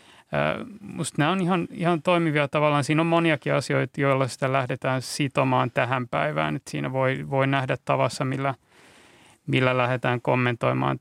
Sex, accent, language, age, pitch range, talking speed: male, native, Finnish, 30-49, 125-145 Hz, 145 wpm